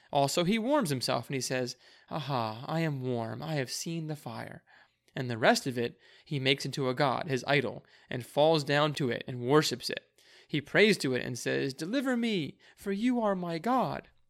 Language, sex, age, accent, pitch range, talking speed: English, male, 30-49, American, 130-175 Hz, 205 wpm